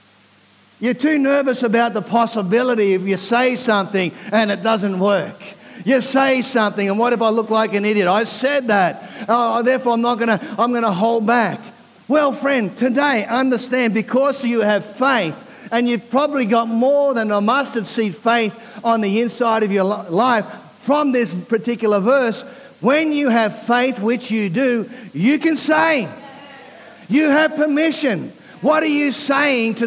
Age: 50-69